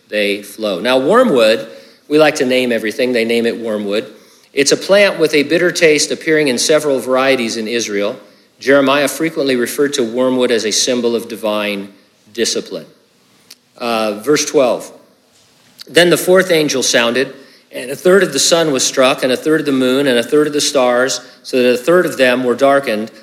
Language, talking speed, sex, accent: English, 190 wpm, male, American